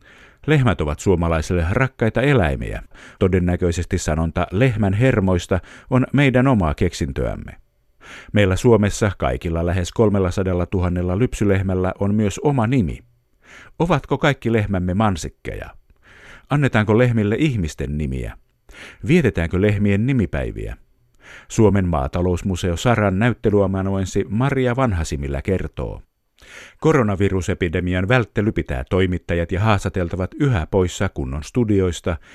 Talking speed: 95 wpm